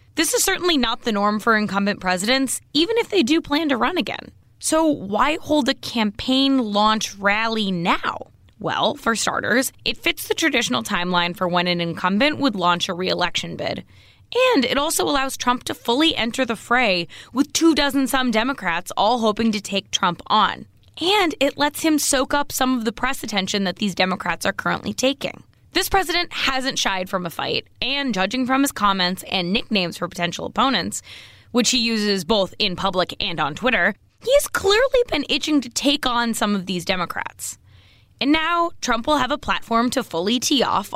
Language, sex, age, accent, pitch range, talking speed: English, female, 20-39, American, 195-285 Hz, 185 wpm